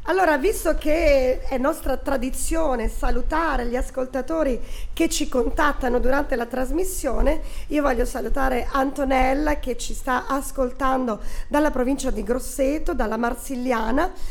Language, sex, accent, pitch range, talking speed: Italian, female, native, 245-300 Hz, 120 wpm